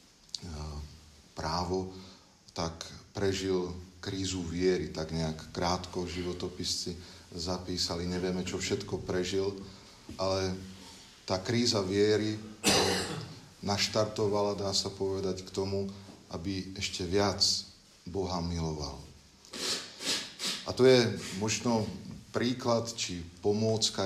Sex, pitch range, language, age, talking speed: male, 90-100 Hz, Slovak, 40-59, 90 wpm